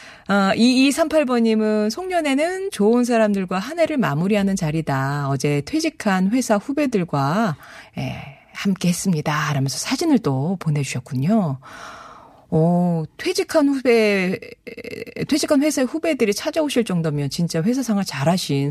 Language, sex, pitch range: Korean, female, 160-250 Hz